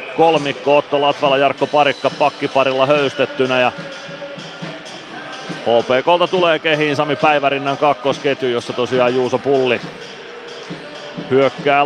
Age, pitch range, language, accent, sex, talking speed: 30-49, 130-150 Hz, Finnish, native, male, 95 wpm